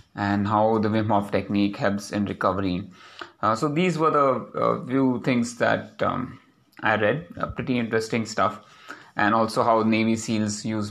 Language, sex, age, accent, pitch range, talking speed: English, male, 30-49, Indian, 105-125 Hz, 170 wpm